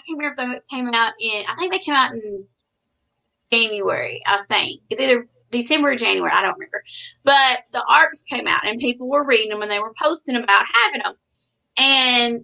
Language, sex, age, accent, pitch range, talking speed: English, female, 30-49, American, 200-265 Hz, 205 wpm